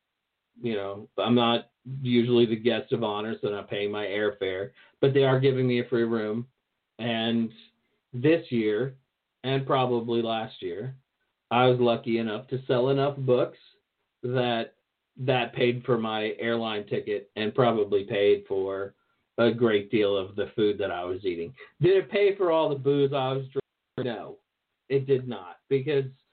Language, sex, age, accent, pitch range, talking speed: English, male, 50-69, American, 110-140 Hz, 170 wpm